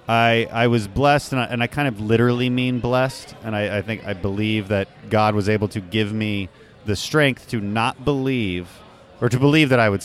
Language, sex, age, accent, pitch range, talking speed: English, male, 30-49, American, 95-115 Hz, 220 wpm